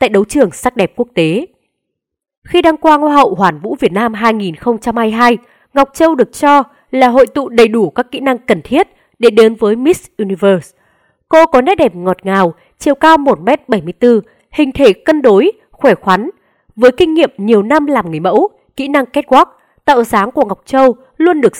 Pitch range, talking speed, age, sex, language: 200-280 Hz, 190 wpm, 20-39, female, Vietnamese